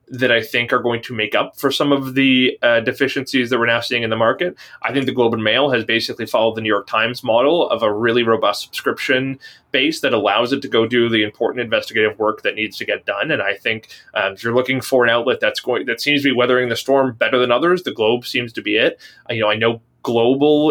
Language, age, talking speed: French, 20-39, 260 wpm